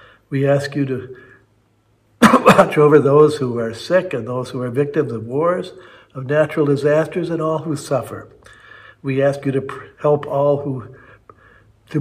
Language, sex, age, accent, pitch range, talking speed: English, male, 60-79, American, 120-150 Hz, 160 wpm